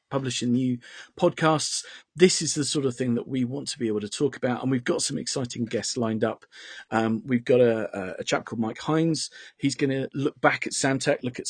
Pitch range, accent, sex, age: 120-150 Hz, British, male, 40-59